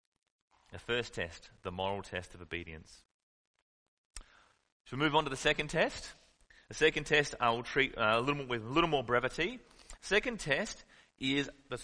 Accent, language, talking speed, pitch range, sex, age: Australian, English, 170 wpm, 95-130 Hz, male, 30-49